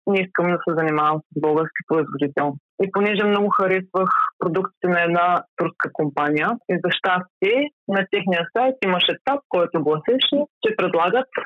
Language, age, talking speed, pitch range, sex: Bulgarian, 30-49, 150 wpm, 170-220 Hz, female